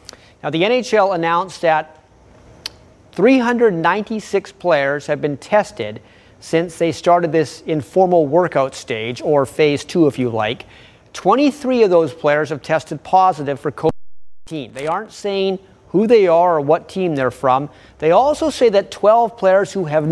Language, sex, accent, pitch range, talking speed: English, male, American, 140-200 Hz, 150 wpm